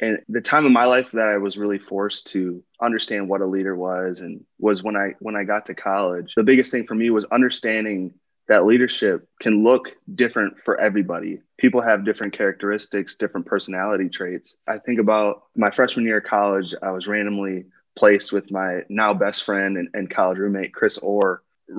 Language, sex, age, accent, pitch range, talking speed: English, male, 20-39, American, 95-110 Hz, 195 wpm